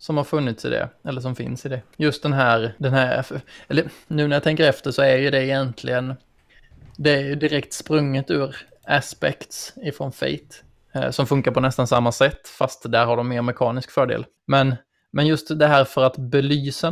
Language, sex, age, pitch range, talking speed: Swedish, male, 20-39, 125-145 Hz, 200 wpm